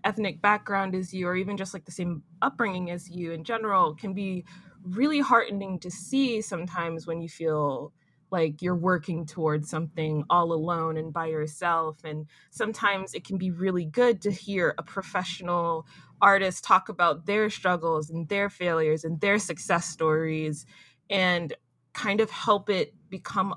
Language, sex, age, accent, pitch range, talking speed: English, female, 20-39, American, 155-185 Hz, 165 wpm